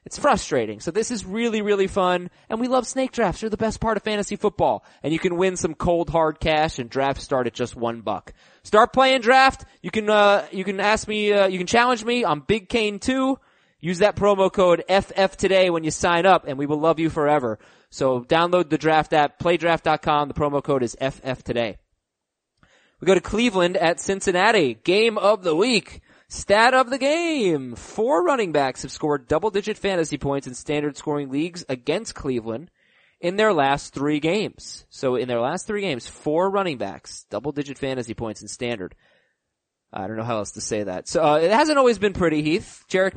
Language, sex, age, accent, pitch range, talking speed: English, male, 20-39, American, 140-200 Hz, 200 wpm